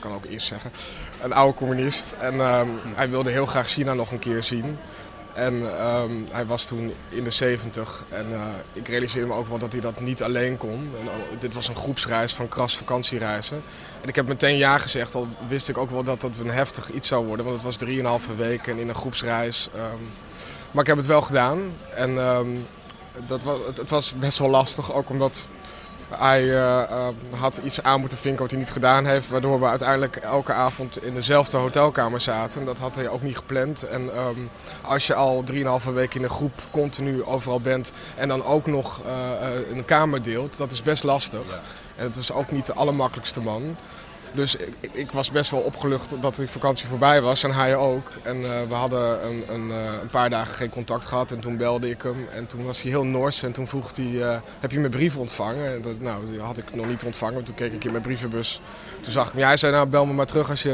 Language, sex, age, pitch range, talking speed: Dutch, male, 20-39, 120-135 Hz, 230 wpm